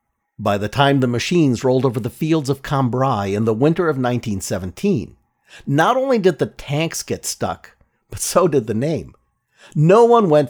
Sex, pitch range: male, 120-195 Hz